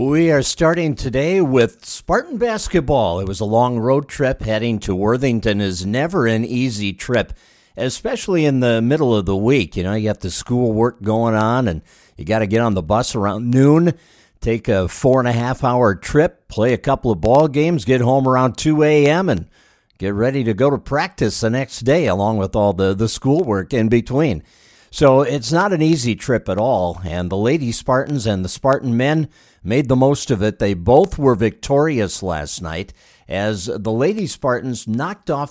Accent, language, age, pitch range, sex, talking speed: American, English, 50-69, 105-135 Hz, male, 195 wpm